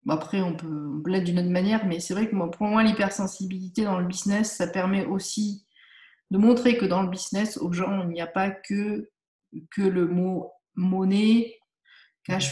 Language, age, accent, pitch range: French, 40-59, French, 175-210 Hz